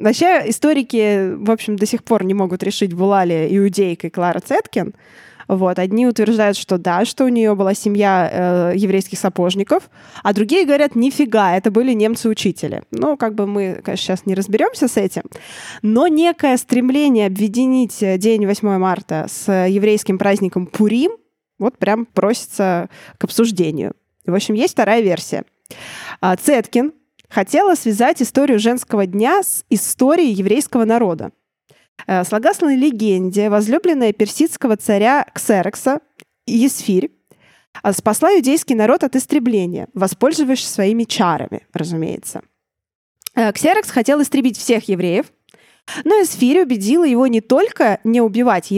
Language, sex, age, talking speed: Russian, female, 20-39, 130 wpm